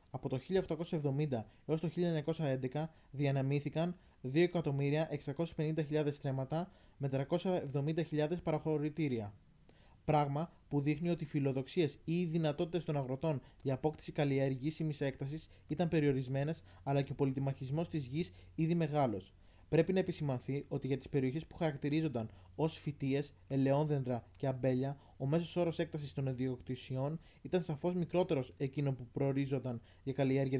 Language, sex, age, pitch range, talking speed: Greek, male, 20-39, 130-155 Hz, 125 wpm